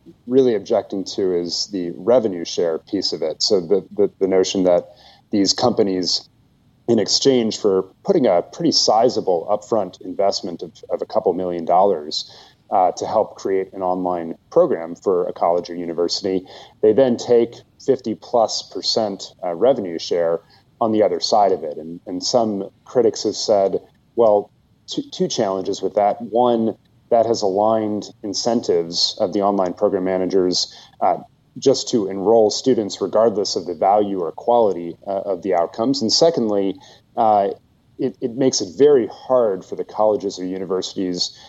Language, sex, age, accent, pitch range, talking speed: English, male, 30-49, American, 90-120 Hz, 160 wpm